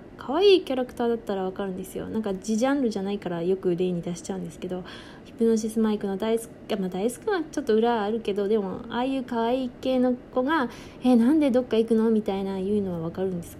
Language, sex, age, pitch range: Japanese, female, 20-39, 200-235 Hz